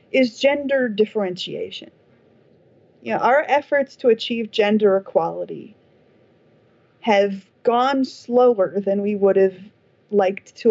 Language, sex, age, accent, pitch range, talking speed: English, female, 30-49, American, 190-250 Hz, 120 wpm